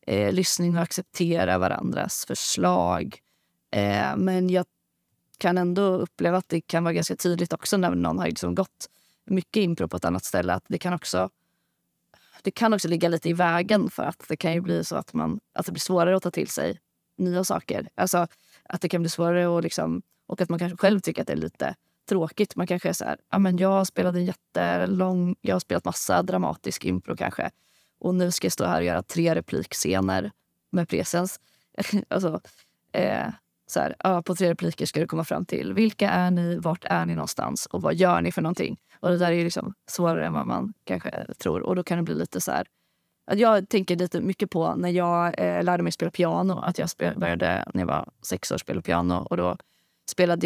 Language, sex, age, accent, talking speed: Swedish, female, 30-49, native, 215 wpm